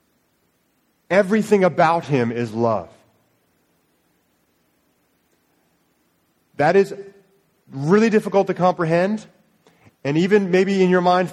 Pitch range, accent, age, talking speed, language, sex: 120-175 Hz, American, 30-49, 90 wpm, English, male